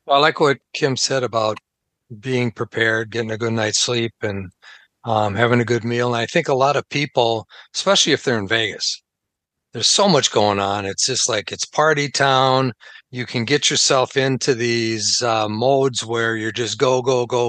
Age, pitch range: 50-69, 115-135 Hz